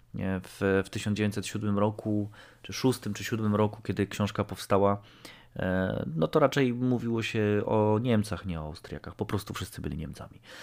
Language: Polish